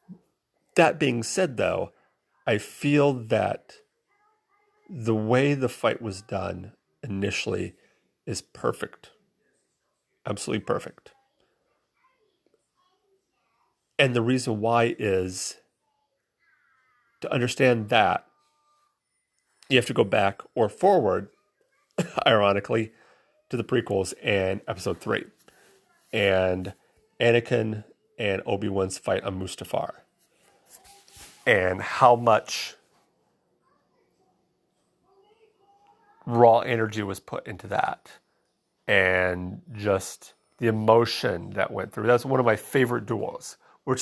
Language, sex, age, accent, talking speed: English, male, 40-59, American, 95 wpm